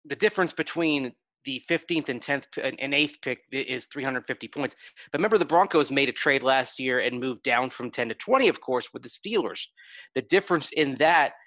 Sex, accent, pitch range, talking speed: male, American, 125-150 Hz, 200 wpm